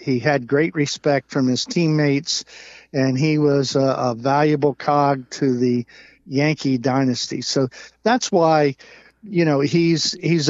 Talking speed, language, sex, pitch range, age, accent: 145 wpm, English, male, 135-165 Hz, 50-69, American